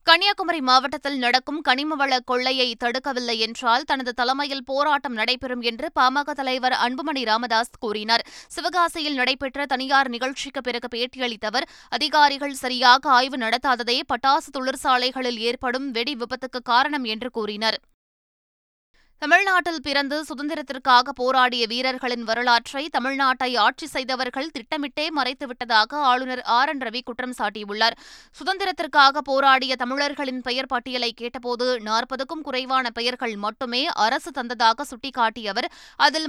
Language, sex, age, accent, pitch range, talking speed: Tamil, female, 20-39, native, 245-285 Hz, 105 wpm